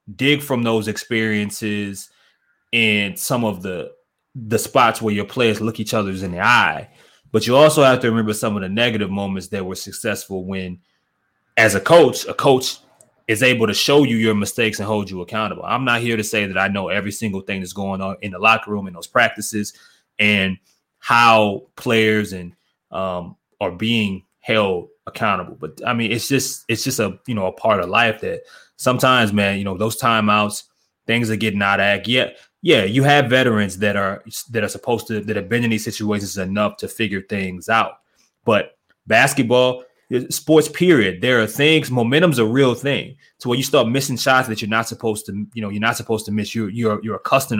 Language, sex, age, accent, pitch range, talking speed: English, male, 20-39, American, 100-125 Hz, 205 wpm